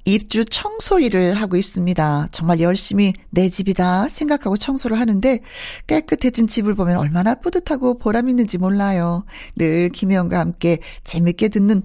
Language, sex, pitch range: Korean, female, 170-240 Hz